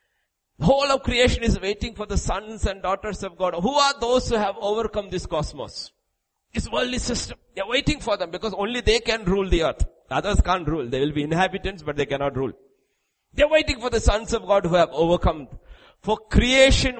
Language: English